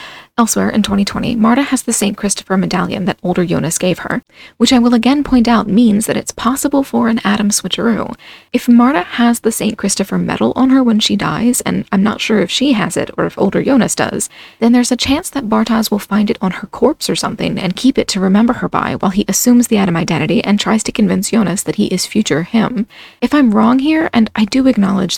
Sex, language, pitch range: female, English, 195-240 Hz